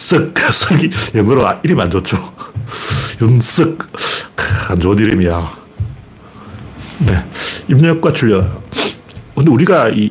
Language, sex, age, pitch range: Korean, male, 60-79, 105-155 Hz